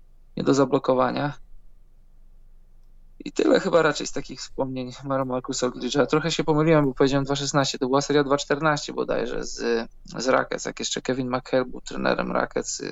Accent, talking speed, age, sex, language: native, 160 wpm, 20-39, male, Polish